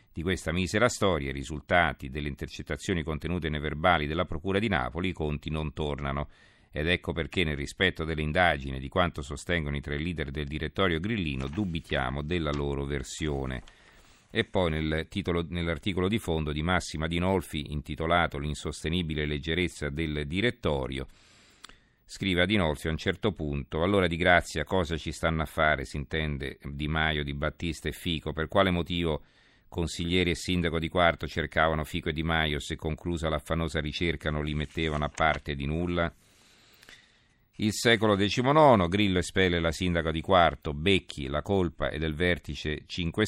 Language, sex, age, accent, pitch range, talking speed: Italian, male, 50-69, native, 75-90 Hz, 160 wpm